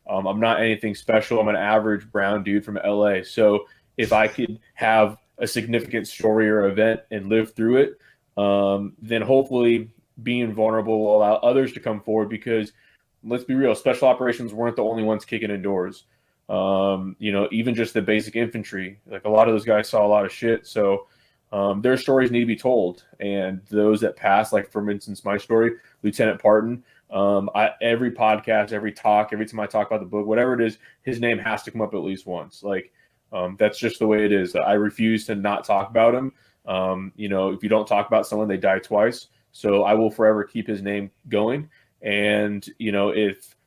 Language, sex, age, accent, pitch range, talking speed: English, male, 20-39, American, 100-115 Hz, 210 wpm